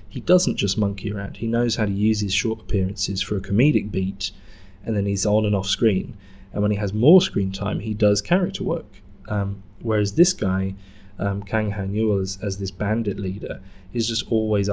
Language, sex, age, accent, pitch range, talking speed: English, male, 20-39, British, 95-110 Hz, 205 wpm